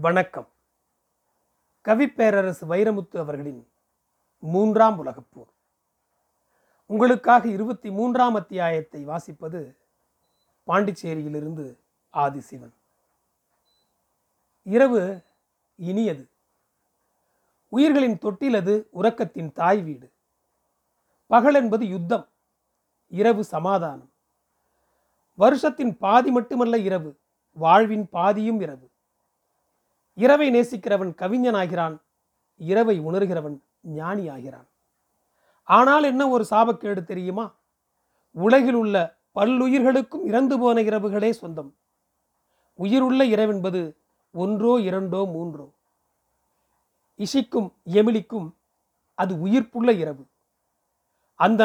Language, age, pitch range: Tamil, 40-59, 170-240 Hz